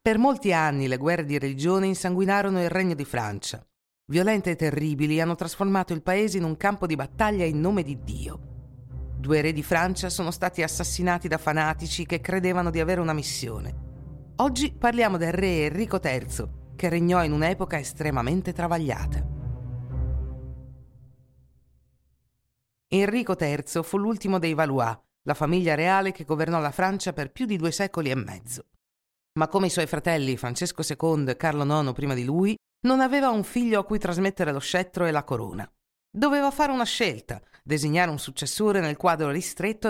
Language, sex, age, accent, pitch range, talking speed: Italian, female, 50-69, native, 145-195 Hz, 165 wpm